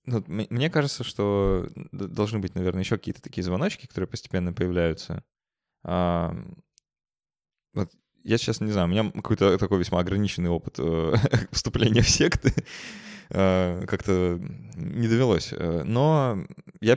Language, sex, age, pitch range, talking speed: Russian, male, 20-39, 85-105 Hz, 120 wpm